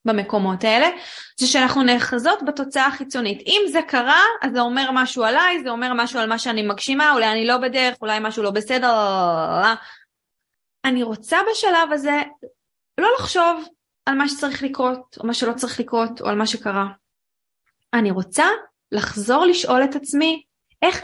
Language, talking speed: Hebrew, 160 wpm